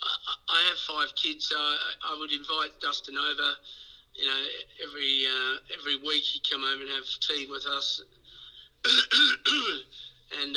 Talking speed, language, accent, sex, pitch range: 140 wpm, English, Australian, male, 140-160 Hz